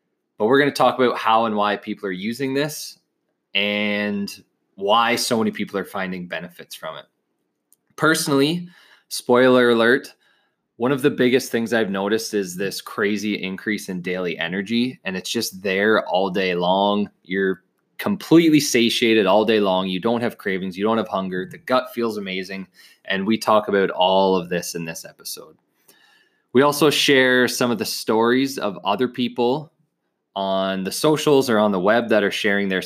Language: English